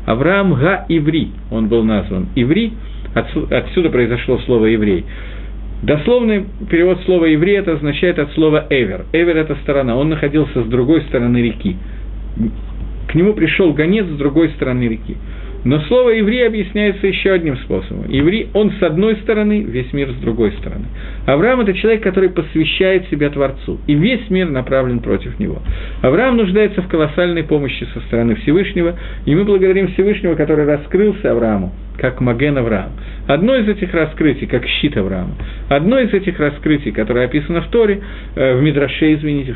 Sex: male